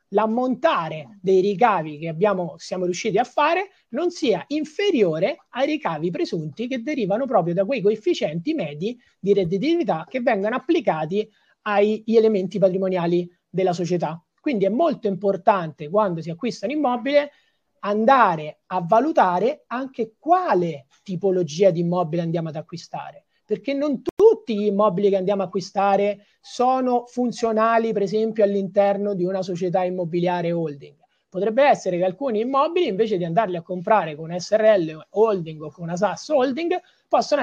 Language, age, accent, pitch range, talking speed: Italian, 30-49, native, 180-245 Hz, 145 wpm